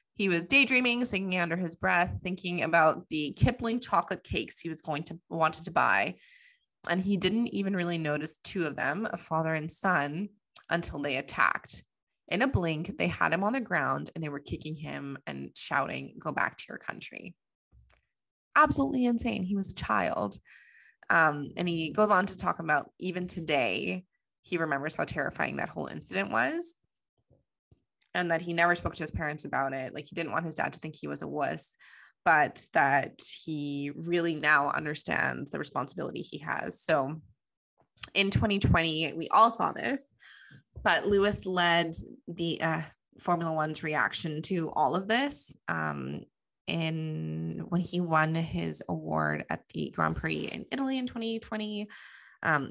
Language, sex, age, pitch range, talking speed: English, female, 20-39, 150-195 Hz, 170 wpm